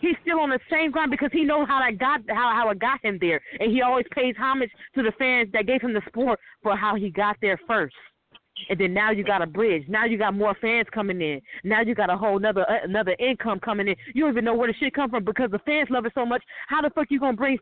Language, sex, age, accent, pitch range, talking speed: English, female, 20-39, American, 220-280 Hz, 290 wpm